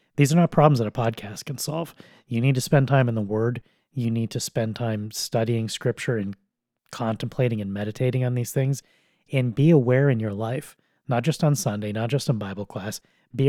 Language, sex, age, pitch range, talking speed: English, male, 30-49, 115-140 Hz, 210 wpm